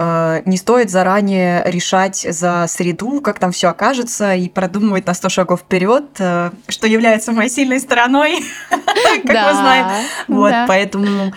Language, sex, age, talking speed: Russian, female, 20-39, 130 wpm